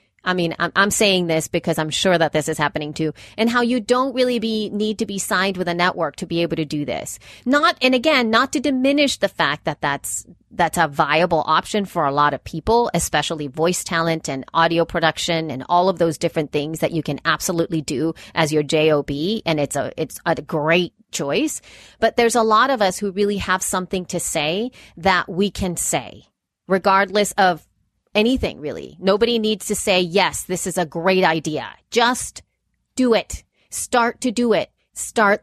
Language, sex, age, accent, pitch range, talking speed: English, female, 30-49, American, 165-235 Hz, 195 wpm